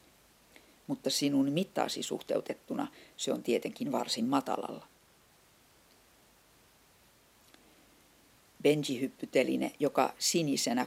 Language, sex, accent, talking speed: English, female, Finnish, 65 wpm